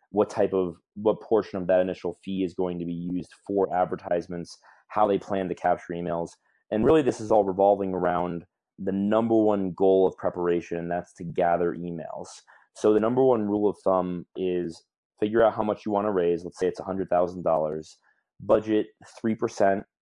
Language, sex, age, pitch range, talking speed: English, male, 30-49, 85-100 Hz, 195 wpm